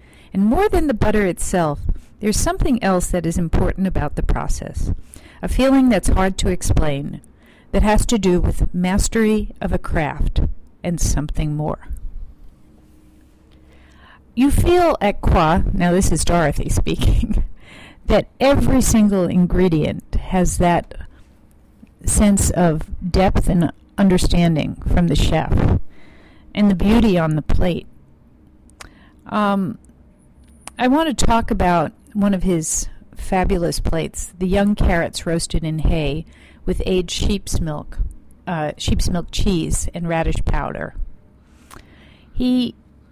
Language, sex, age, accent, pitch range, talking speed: English, female, 50-69, American, 155-215 Hz, 125 wpm